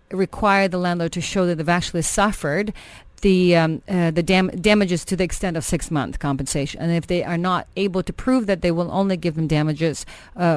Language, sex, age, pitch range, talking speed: English, female, 40-59, 160-190 Hz, 210 wpm